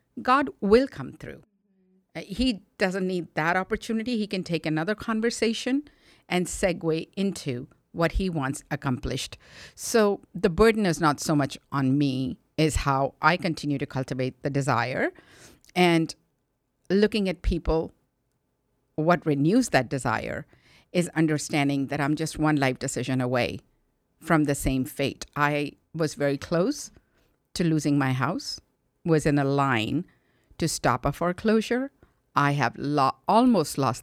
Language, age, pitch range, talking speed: English, 50-69, 140-185 Hz, 140 wpm